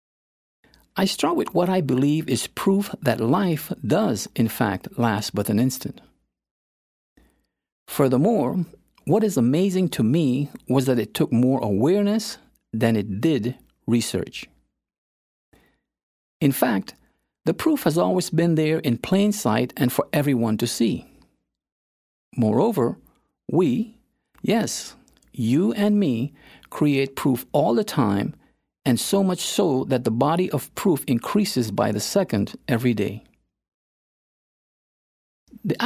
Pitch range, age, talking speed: 115-185 Hz, 50-69, 125 wpm